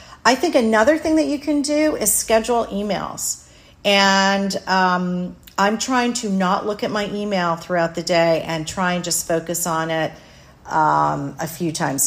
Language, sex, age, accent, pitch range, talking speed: English, female, 40-59, American, 170-220 Hz, 175 wpm